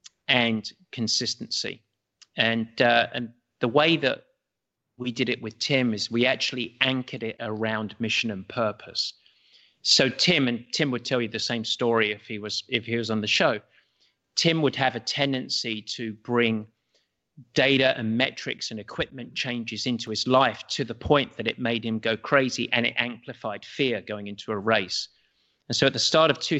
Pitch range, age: 110-130 Hz, 30-49